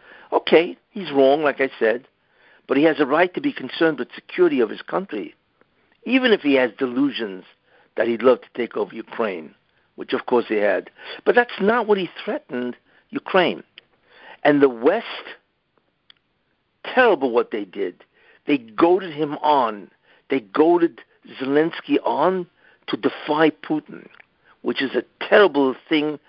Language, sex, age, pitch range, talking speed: English, male, 60-79, 140-225 Hz, 150 wpm